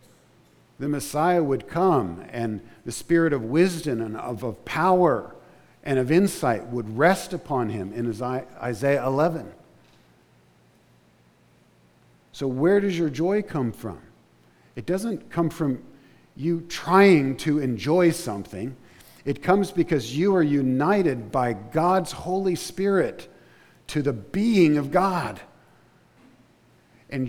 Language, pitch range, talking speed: English, 115-160 Hz, 120 wpm